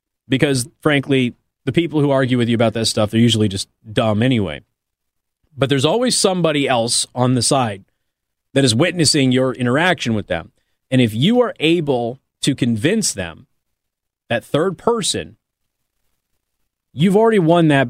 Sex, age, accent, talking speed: male, 30-49, American, 155 wpm